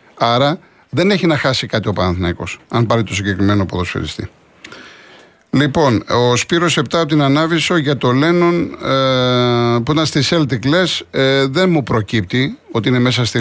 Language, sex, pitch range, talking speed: Greek, male, 120-165 Hz, 150 wpm